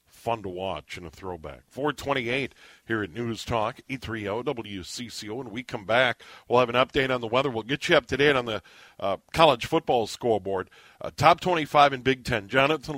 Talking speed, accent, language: 200 wpm, American, English